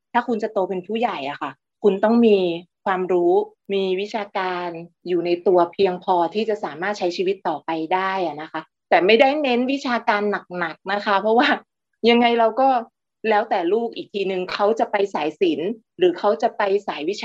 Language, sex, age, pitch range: Thai, female, 30-49, 175-225 Hz